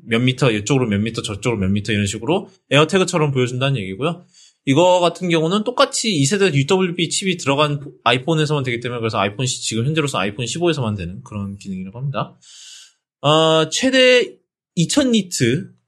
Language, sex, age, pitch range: Korean, male, 20-39, 120-175 Hz